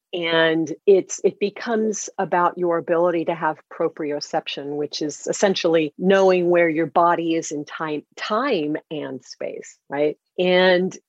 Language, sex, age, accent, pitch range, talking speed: English, female, 50-69, American, 160-200 Hz, 135 wpm